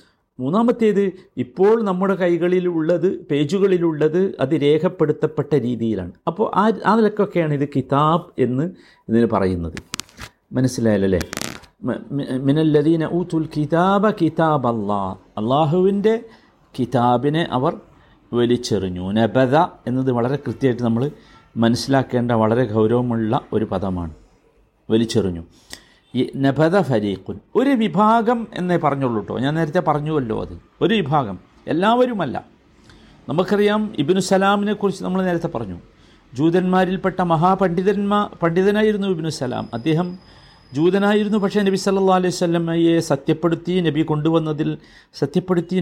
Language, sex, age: Malayalam, male, 50-69